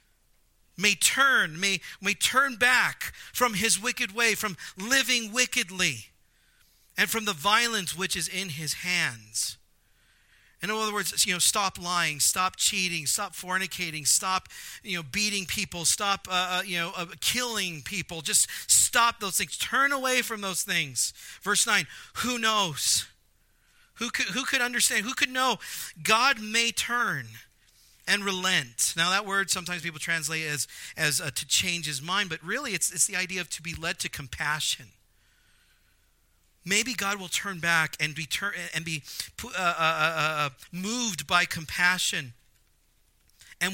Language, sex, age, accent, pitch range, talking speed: English, male, 40-59, American, 150-200 Hz, 160 wpm